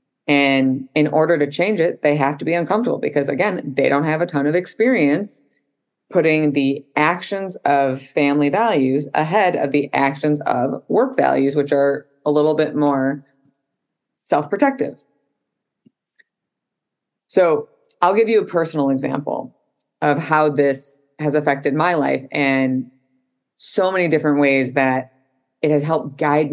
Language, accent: English, American